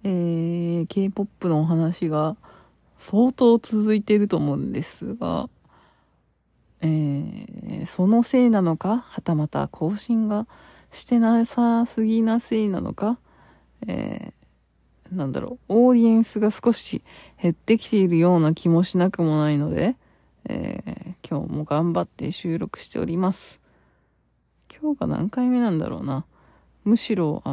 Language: Japanese